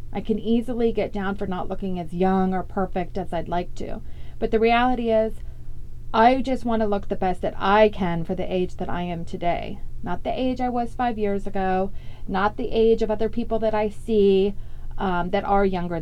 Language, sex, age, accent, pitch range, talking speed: English, female, 30-49, American, 170-220 Hz, 215 wpm